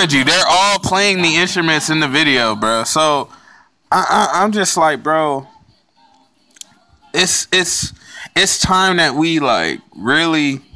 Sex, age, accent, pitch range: male, 20-39, American, 140-195 Hz